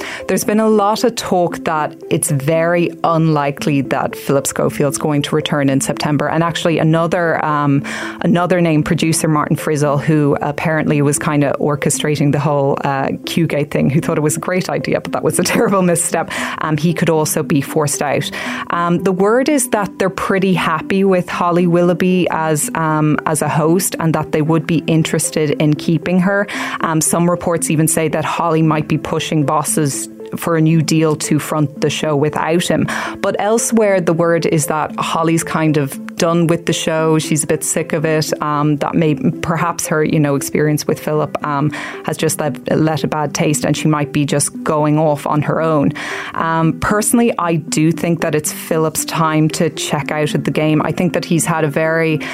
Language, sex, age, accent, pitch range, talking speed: English, female, 20-39, Irish, 150-170 Hz, 200 wpm